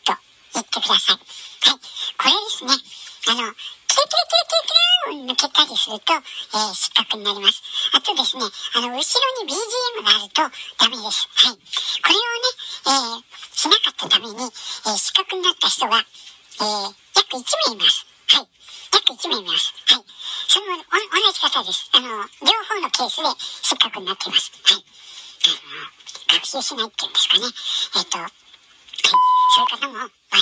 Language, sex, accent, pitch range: Japanese, male, American, 230-375 Hz